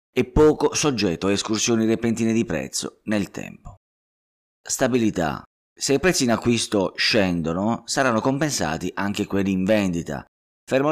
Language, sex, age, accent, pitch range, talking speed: Italian, male, 30-49, native, 85-120 Hz, 130 wpm